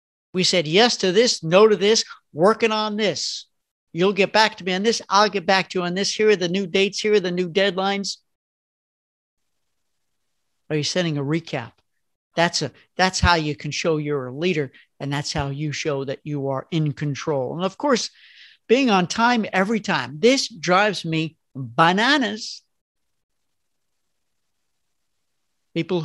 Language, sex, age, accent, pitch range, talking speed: English, male, 60-79, American, 160-215 Hz, 165 wpm